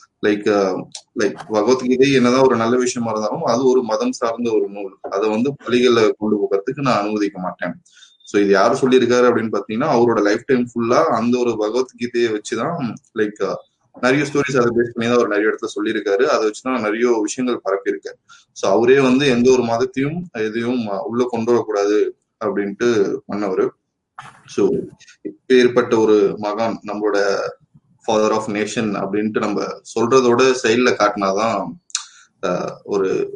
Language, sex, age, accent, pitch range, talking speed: Tamil, male, 20-39, native, 105-125 Hz, 140 wpm